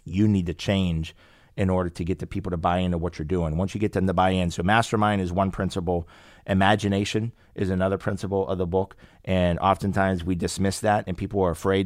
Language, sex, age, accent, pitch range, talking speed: English, male, 30-49, American, 90-110 Hz, 225 wpm